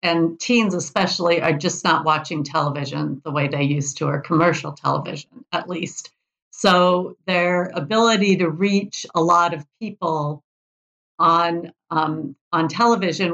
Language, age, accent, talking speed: English, 50-69, American, 140 wpm